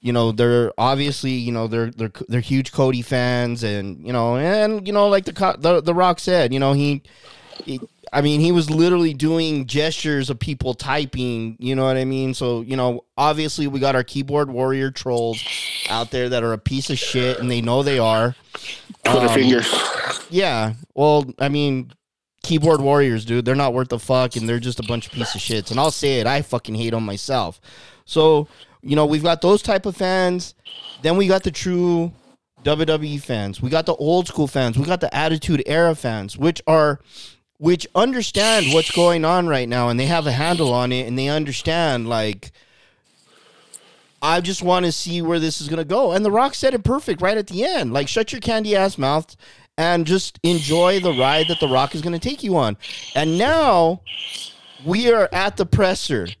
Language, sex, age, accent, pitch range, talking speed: English, male, 20-39, American, 125-170 Hz, 205 wpm